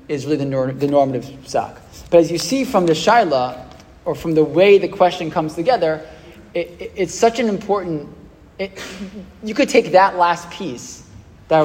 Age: 20-39